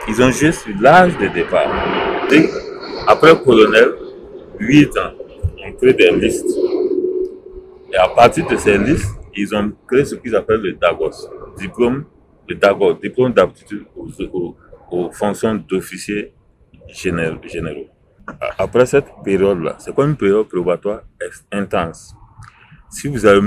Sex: male